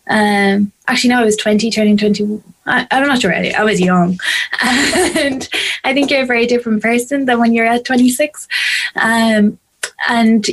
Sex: female